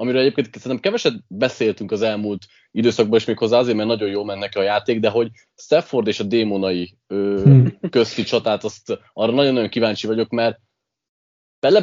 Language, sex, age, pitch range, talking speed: Hungarian, male, 20-39, 105-125 Hz, 170 wpm